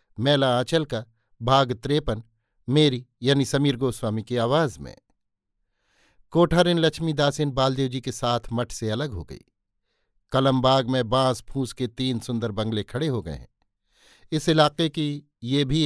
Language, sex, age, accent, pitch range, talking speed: Hindi, male, 50-69, native, 115-140 Hz, 155 wpm